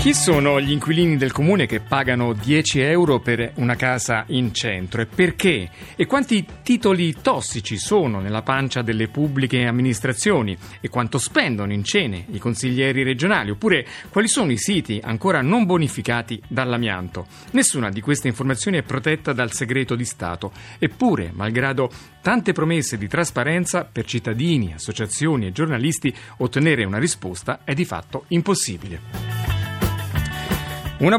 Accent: native